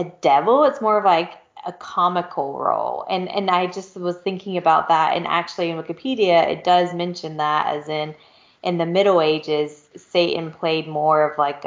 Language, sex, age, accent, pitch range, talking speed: English, female, 20-39, American, 150-170 Hz, 180 wpm